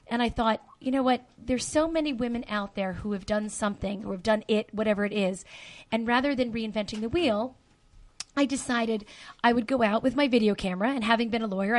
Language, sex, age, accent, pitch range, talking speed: English, female, 30-49, American, 205-250 Hz, 225 wpm